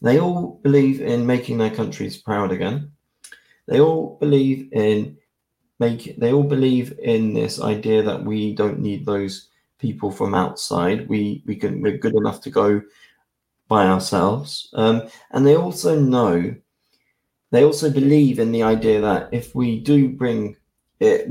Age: 20-39